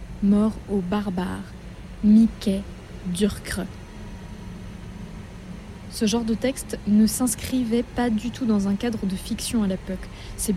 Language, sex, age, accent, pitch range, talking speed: French, female, 20-39, French, 195-235 Hz, 125 wpm